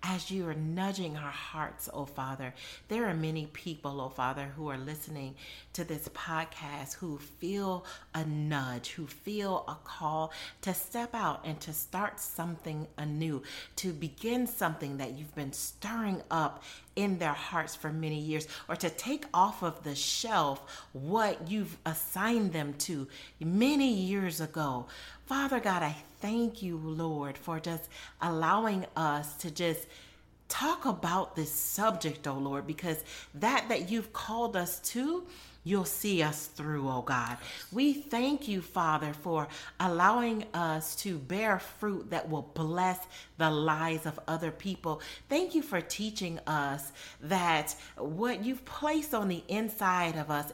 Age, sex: 40-59, female